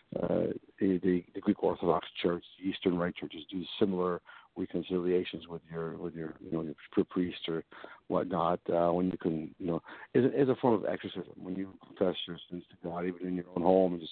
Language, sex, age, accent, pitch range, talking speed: English, male, 60-79, American, 85-95 Hz, 205 wpm